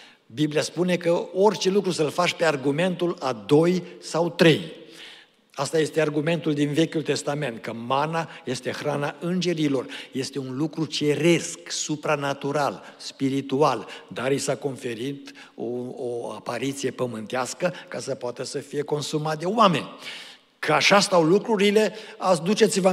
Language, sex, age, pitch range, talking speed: Romanian, male, 60-79, 145-190 Hz, 135 wpm